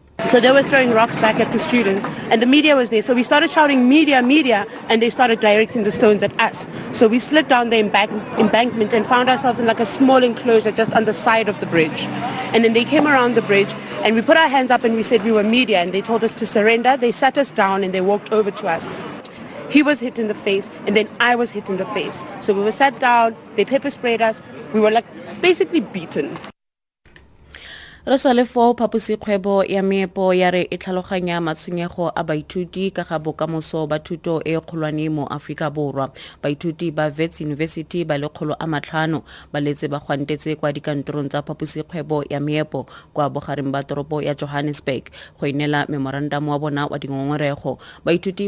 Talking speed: 195 wpm